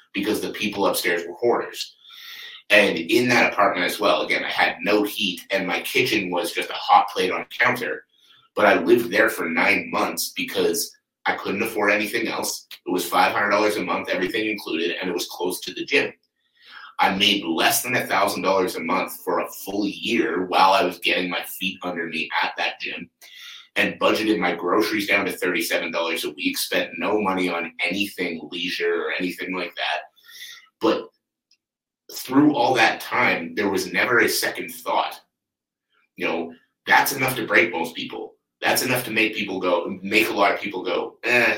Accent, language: American, English